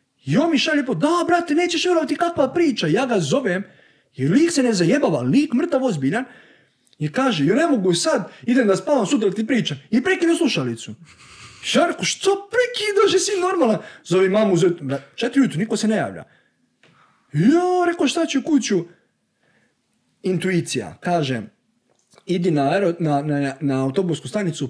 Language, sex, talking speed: Croatian, male, 160 wpm